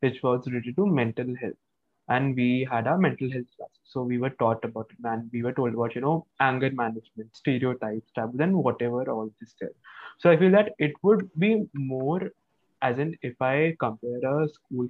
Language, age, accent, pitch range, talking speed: English, 20-39, Indian, 120-160 Hz, 200 wpm